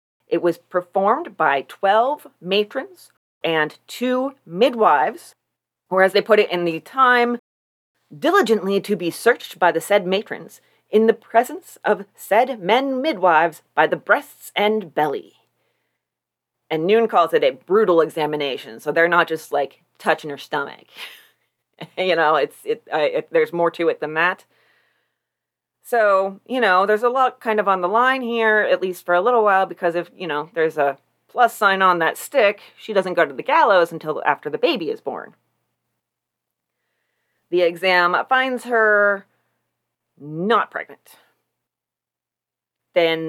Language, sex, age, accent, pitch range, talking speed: English, female, 30-49, American, 170-240 Hz, 155 wpm